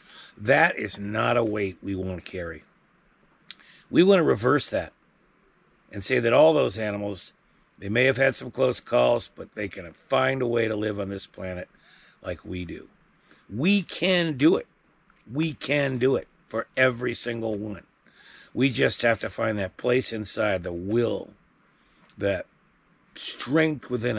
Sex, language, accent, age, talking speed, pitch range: male, English, American, 50-69, 165 wpm, 100-130 Hz